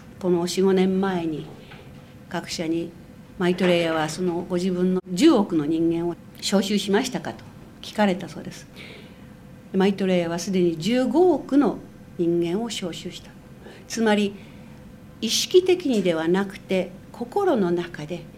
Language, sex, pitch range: Japanese, female, 175-225 Hz